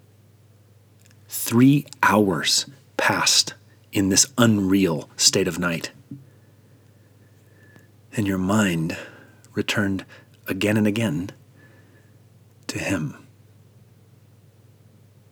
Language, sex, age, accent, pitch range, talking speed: English, male, 40-59, American, 105-115 Hz, 70 wpm